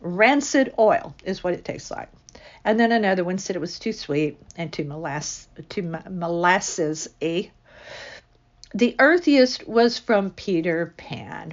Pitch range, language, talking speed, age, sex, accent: 170-230 Hz, English, 135 wpm, 60-79, female, American